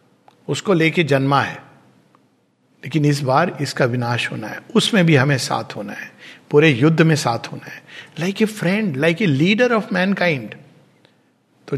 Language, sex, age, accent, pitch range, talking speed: Hindi, male, 50-69, native, 135-175 Hz, 165 wpm